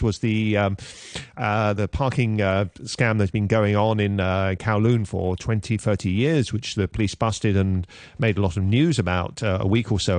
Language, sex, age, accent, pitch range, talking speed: English, male, 40-59, British, 105-135 Hz, 205 wpm